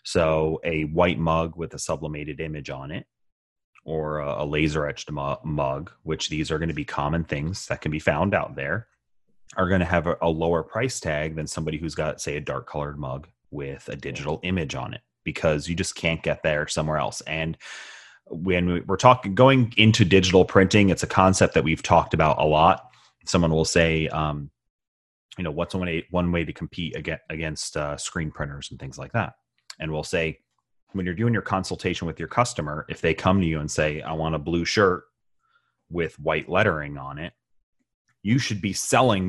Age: 30-49